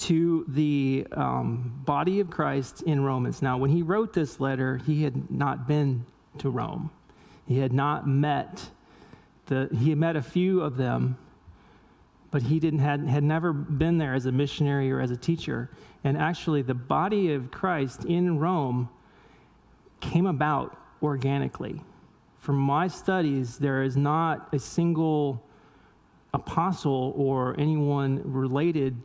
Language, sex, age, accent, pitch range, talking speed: English, male, 40-59, American, 135-165 Hz, 145 wpm